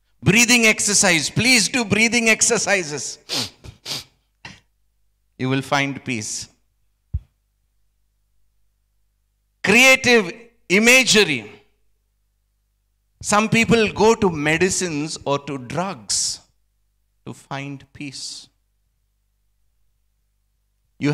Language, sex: Telugu, male